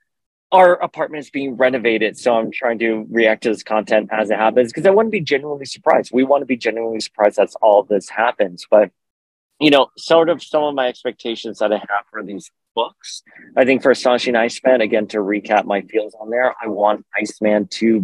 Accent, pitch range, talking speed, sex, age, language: American, 105-130 Hz, 210 wpm, male, 30-49, English